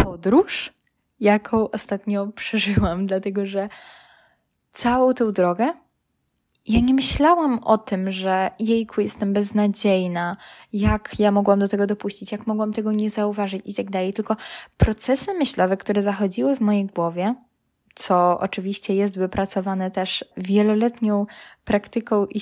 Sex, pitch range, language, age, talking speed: female, 195-230 Hz, Polish, 10-29, 130 wpm